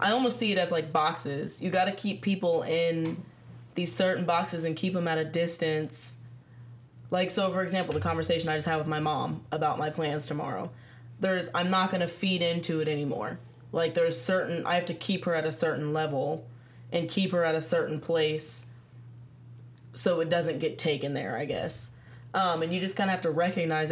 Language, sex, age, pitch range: English, female, 20-39, 125-170 Hz